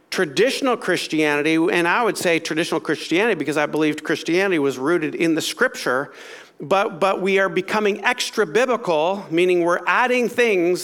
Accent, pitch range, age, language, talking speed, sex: American, 160-215 Hz, 50-69, English, 150 wpm, male